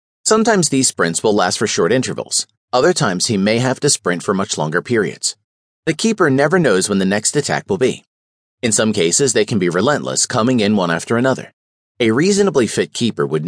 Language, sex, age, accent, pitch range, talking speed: English, male, 40-59, American, 100-150 Hz, 205 wpm